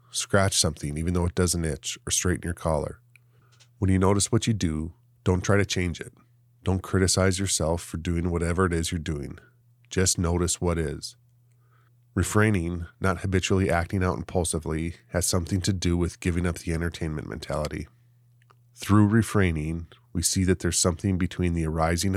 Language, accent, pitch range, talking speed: English, American, 85-110 Hz, 170 wpm